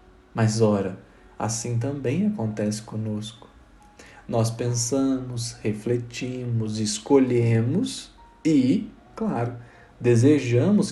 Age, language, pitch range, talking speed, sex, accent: 40-59, Portuguese, 110-135 Hz, 70 wpm, male, Brazilian